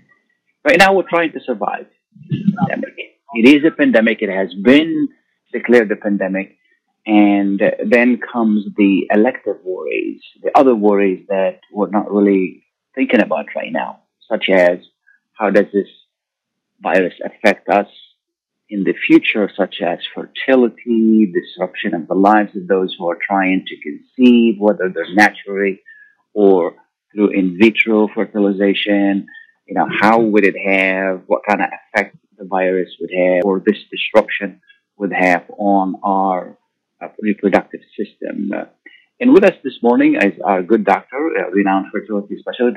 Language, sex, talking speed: Arabic, male, 150 wpm